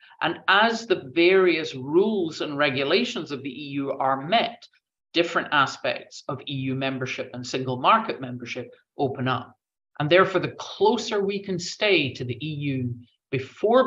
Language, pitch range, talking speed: English, 125-175 Hz, 145 wpm